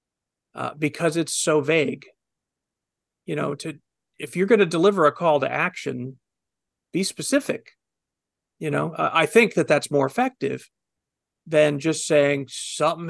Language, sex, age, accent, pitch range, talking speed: English, male, 40-59, American, 150-205 Hz, 145 wpm